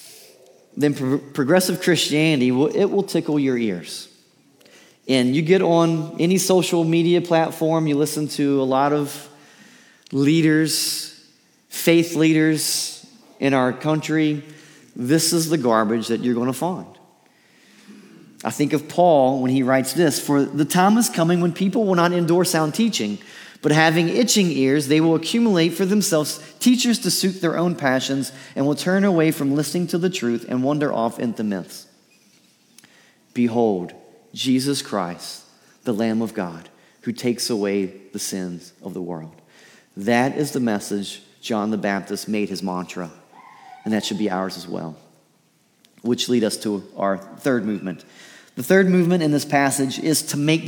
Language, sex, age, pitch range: English, male, 30-49, 120-165 Hz